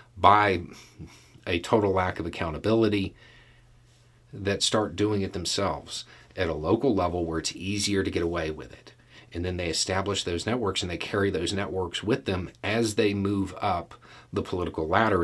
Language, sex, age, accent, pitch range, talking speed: English, male, 40-59, American, 95-120 Hz, 170 wpm